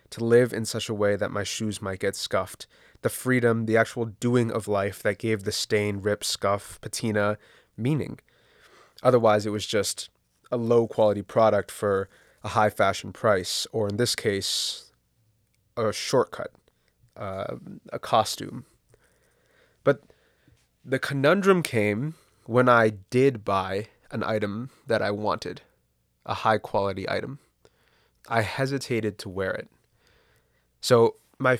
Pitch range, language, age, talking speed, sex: 105-125 Hz, English, 20-39, 135 wpm, male